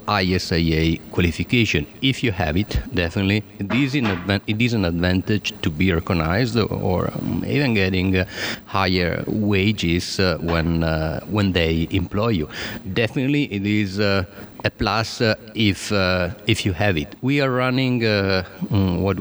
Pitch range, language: 90-110 Hz, English